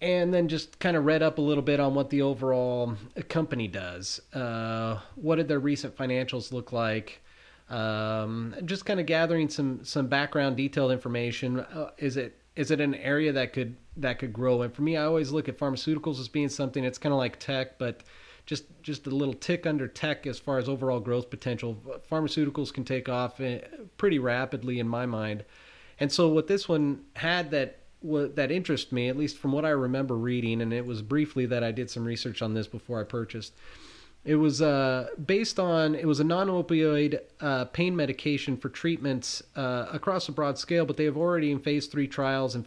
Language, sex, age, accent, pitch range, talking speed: English, male, 30-49, American, 125-150 Hz, 205 wpm